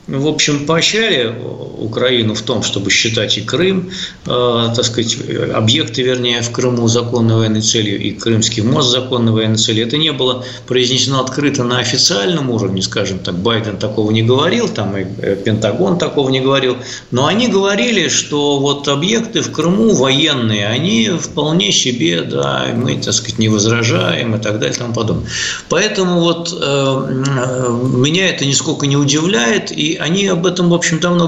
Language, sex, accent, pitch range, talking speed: Russian, male, native, 110-150 Hz, 165 wpm